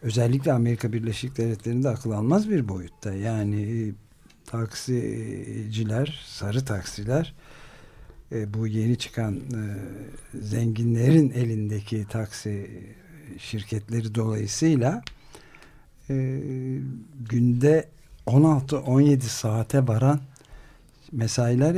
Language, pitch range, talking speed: Turkish, 110-140 Hz, 65 wpm